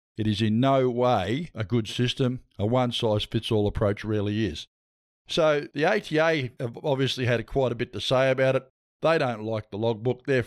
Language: English